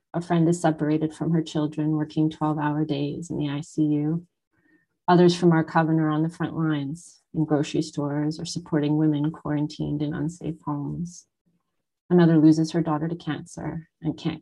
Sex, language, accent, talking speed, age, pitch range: female, English, American, 165 wpm, 30-49, 150-170 Hz